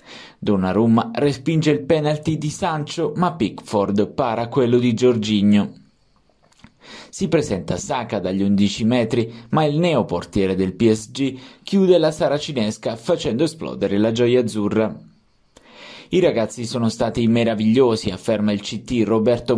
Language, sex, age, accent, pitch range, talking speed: Italian, male, 20-39, native, 105-140 Hz, 125 wpm